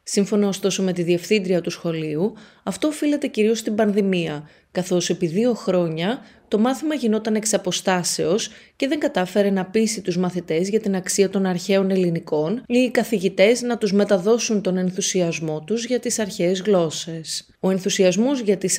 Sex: female